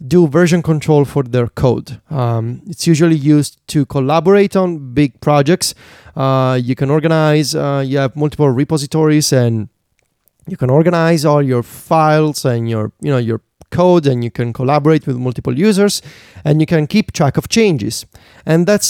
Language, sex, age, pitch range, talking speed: English, male, 30-49, 135-170 Hz, 170 wpm